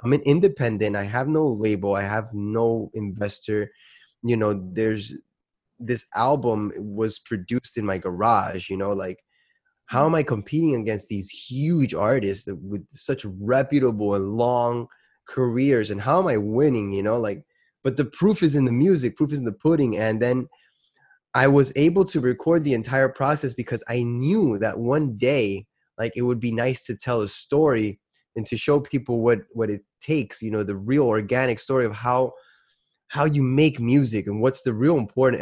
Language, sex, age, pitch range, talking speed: English, male, 20-39, 105-135 Hz, 185 wpm